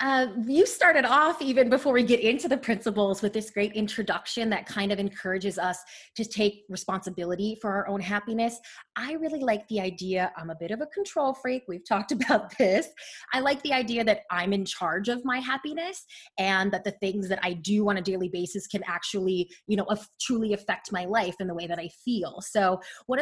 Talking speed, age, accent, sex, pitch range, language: 210 wpm, 20-39, American, female, 195-260 Hz, English